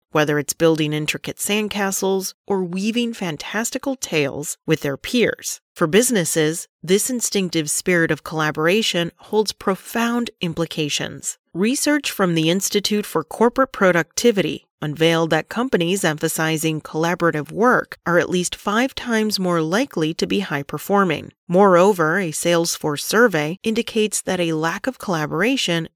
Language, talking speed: English, 125 wpm